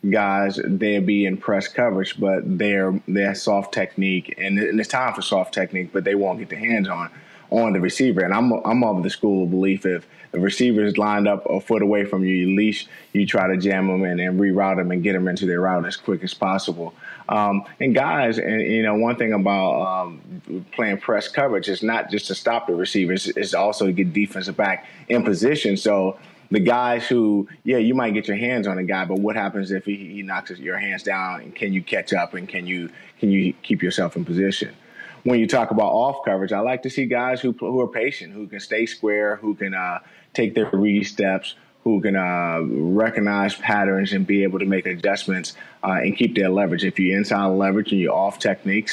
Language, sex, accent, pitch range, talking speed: English, male, American, 95-105 Hz, 220 wpm